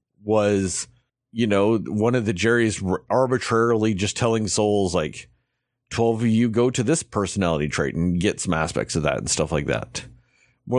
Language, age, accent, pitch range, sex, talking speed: English, 40-59, American, 95-120 Hz, male, 170 wpm